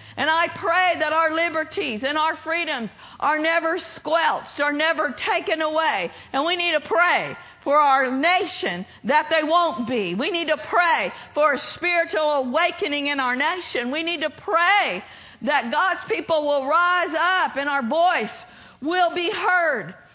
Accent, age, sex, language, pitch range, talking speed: American, 50-69, female, English, 300-365 Hz, 165 wpm